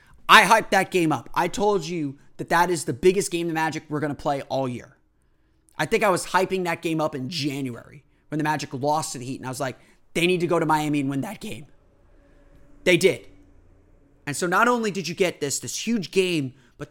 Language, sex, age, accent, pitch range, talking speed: English, male, 30-49, American, 140-190 Hz, 240 wpm